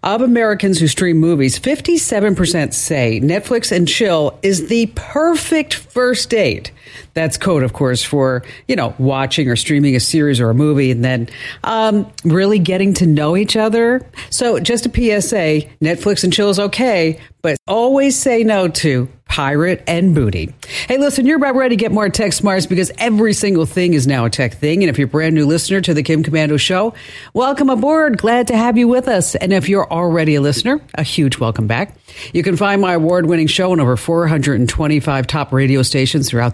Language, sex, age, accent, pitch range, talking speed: English, female, 50-69, American, 135-210 Hz, 195 wpm